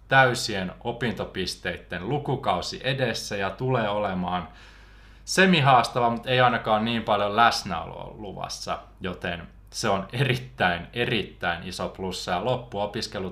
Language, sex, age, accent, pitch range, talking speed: Finnish, male, 20-39, native, 100-130 Hz, 110 wpm